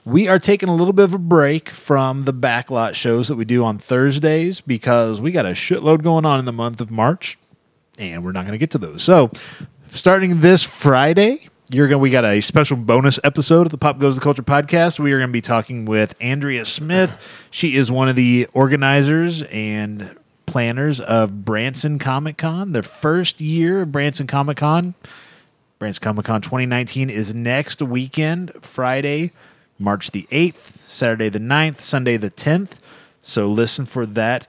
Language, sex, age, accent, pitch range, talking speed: English, male, 30-49, American, 120-160 Hz, 185 wpm